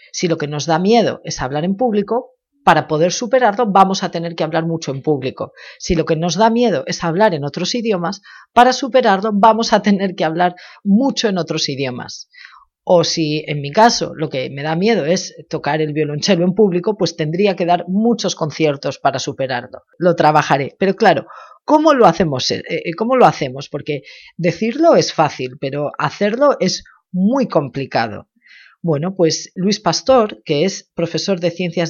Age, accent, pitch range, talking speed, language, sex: 40-59, Spanish, 160-220 Hz, 180 wpm, Spanish, female